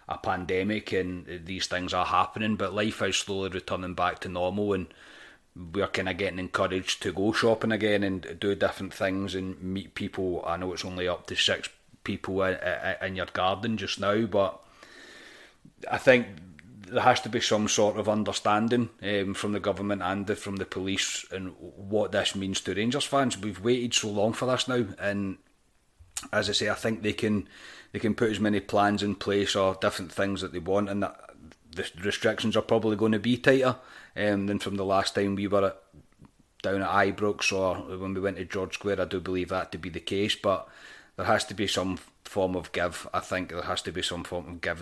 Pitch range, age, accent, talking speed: 95-105 Hz, 30-49, British, 210 wpm